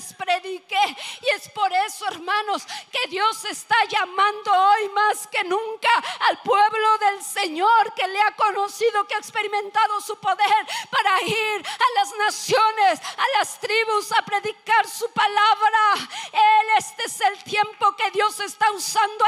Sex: female